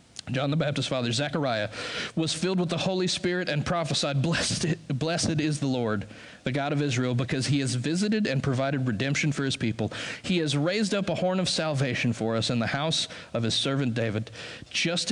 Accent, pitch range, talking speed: American, 120-150 Hz, 200 wpm